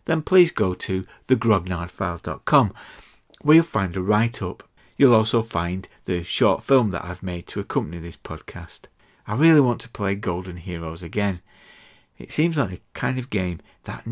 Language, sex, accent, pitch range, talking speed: English, male, British, 90-125 Hz, 165 wpm